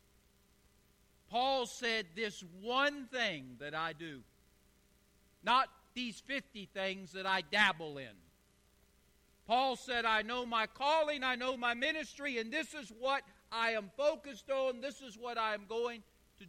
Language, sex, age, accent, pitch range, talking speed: English, male, 50-69, American, 155-225 Hz, 150 wpm